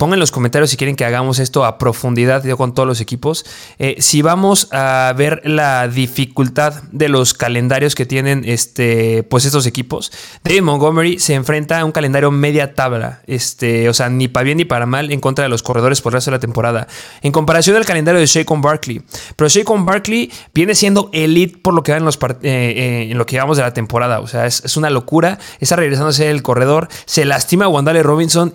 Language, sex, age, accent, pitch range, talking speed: Spanish, male, 20-39, Mexican, 130-160 Hz, 215 wpm